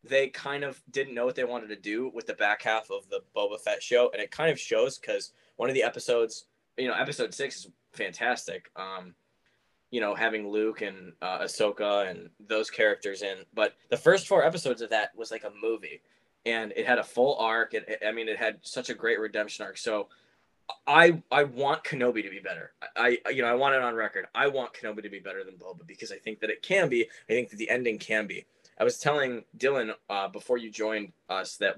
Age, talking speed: 10-29, 230 wpm